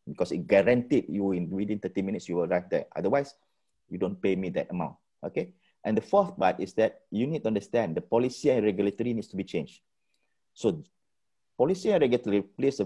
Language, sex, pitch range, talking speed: English, male, 100-135 Hz, 205 wpm